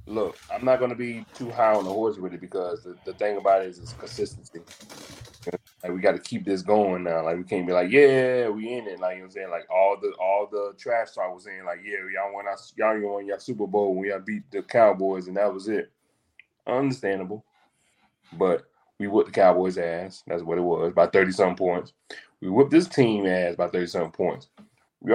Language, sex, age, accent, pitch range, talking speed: English, male, 20-39, American, 95-120 Hz, 230 wpm